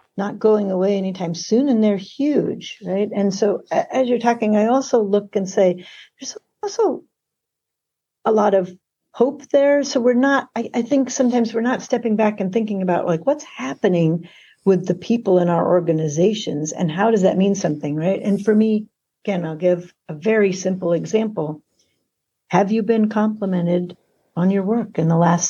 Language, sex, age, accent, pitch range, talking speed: English, female, 60-79, American, 175-220 Hz, 180 wpm